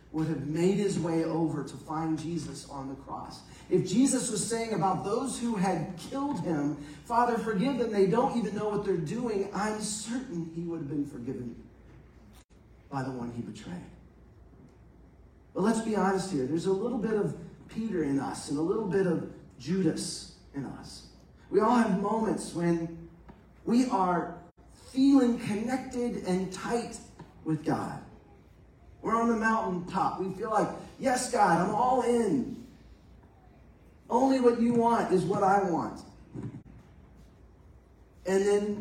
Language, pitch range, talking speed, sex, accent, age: English, 140-205 Hz, 155 wpm, male, American, 40-59